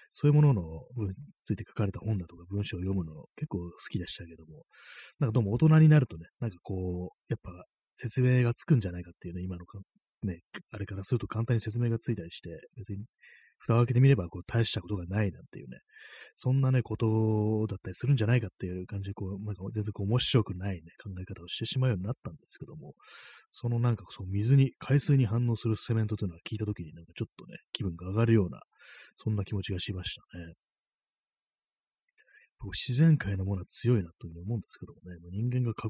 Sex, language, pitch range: male, Japanese, 90-125 Hz